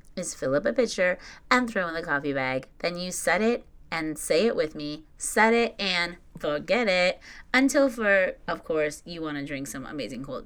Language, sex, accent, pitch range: English, female, American, 150-225 Hz